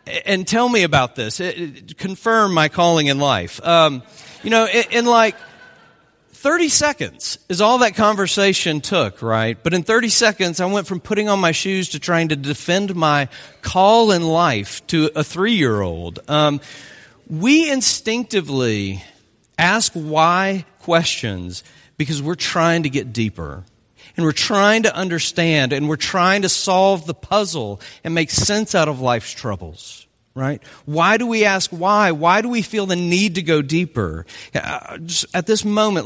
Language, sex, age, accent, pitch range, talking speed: English, male, 40-59, American, 140-195 Hz, 155 wpm